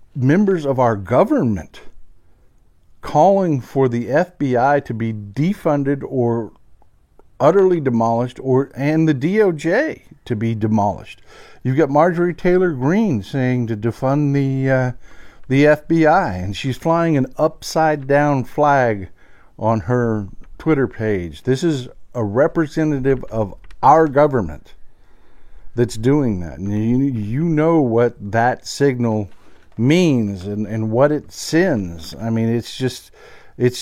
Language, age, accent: English, 50-69, American